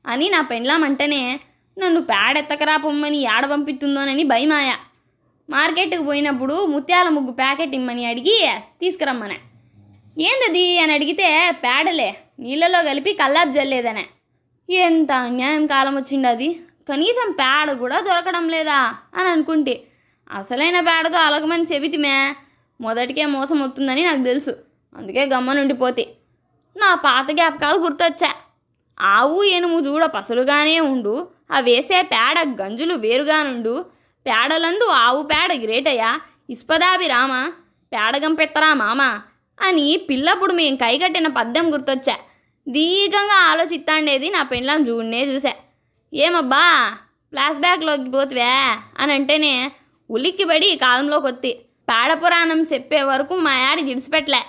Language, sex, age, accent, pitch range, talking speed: Telugu, female, 20-39, native, 270-335 Hz, 105 wpm